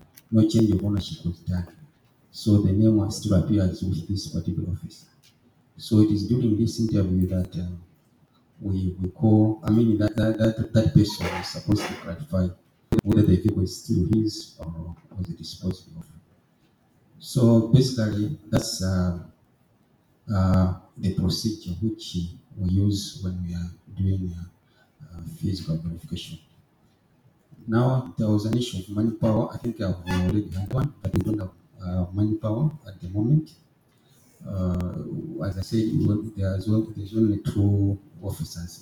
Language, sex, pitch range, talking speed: English, male, 90-110 Hz, 150 wpm